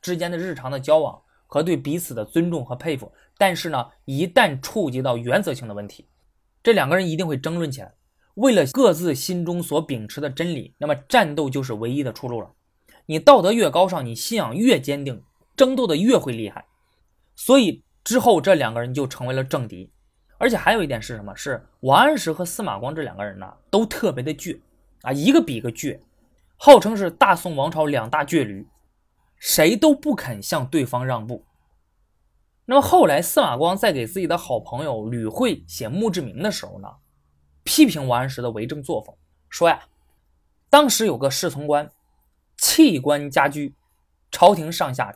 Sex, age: male, 20-39